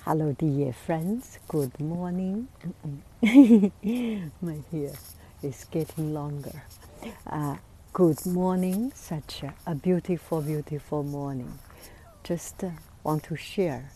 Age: 60-79